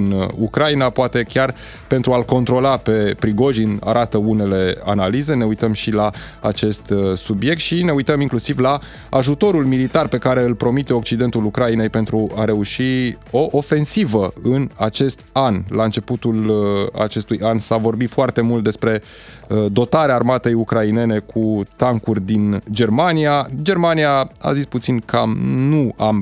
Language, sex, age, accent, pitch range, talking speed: Romanian, male, 20-39, native, 110-140 Hz, 140 wpm